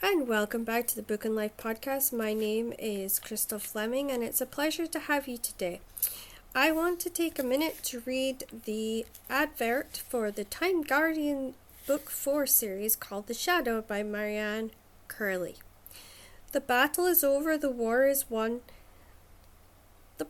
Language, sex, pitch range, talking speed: English, female, 220-295 Hz, 160 wpm